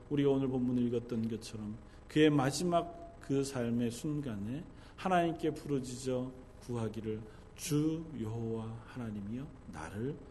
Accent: native